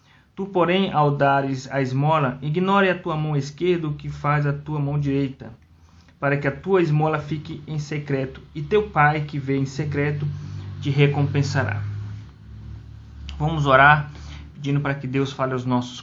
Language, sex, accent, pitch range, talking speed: Portuguese, male, Brazilian, 125-145 Hz, 165 wpm